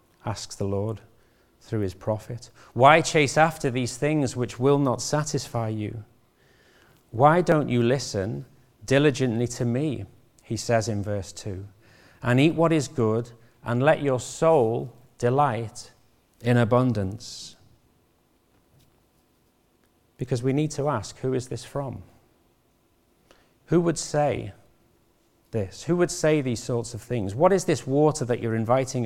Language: English